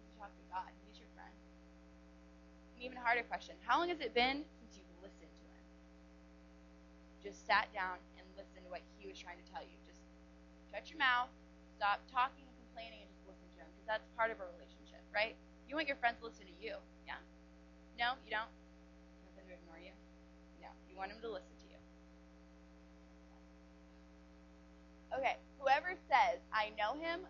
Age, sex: 20-39, female